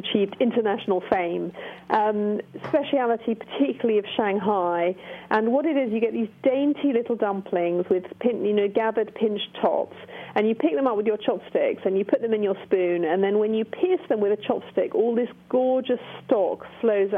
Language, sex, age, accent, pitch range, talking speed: English, female, 40-59, British, 195-235 Hz, 190 wpm